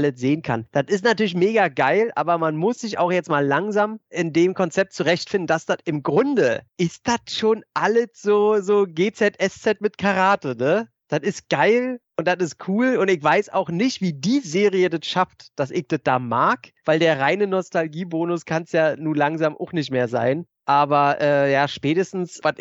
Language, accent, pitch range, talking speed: German, German, 140-185 Hz, 195 wpm